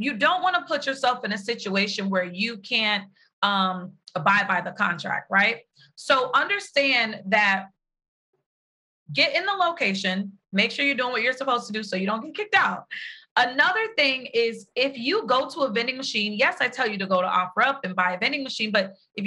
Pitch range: 200-270 Hz